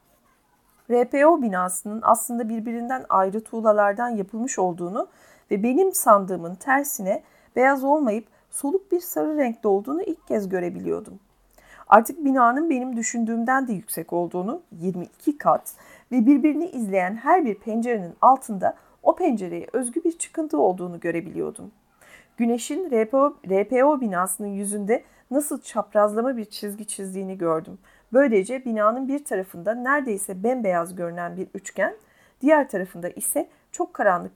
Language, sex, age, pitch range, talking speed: Turkish, female, 40-59, 200-290 Hz, 120 wpm